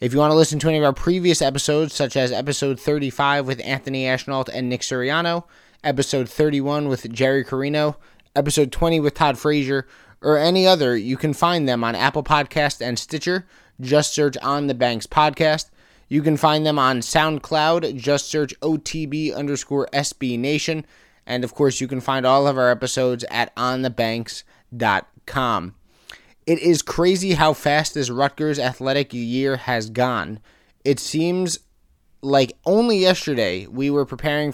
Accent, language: American, English